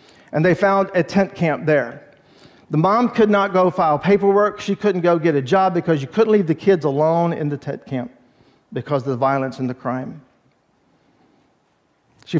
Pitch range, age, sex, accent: 140-175 Hz, 50-69, male, American